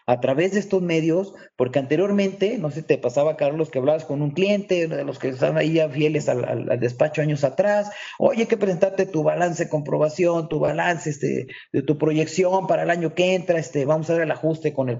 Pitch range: 150-195 Hz